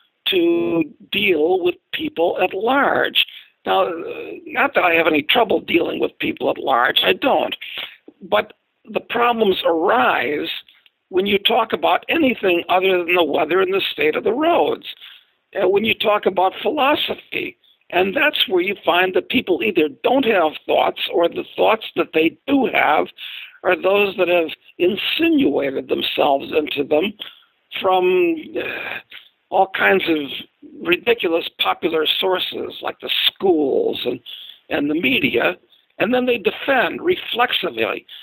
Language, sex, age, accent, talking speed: English, male, 60-79, American, 145 wpm